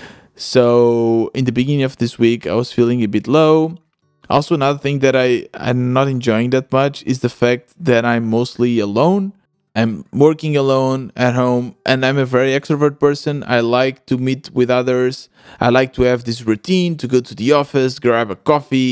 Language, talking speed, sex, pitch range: English, 190 wpm, male, 115-140 Hz